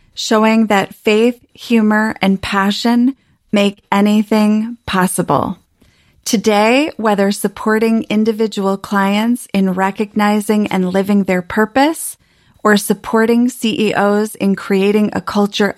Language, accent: English, American